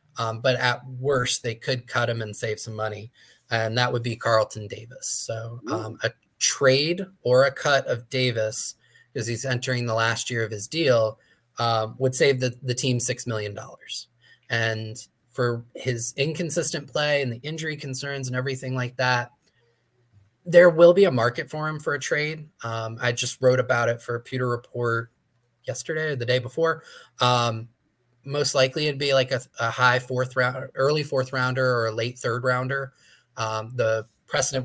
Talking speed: 180 wpm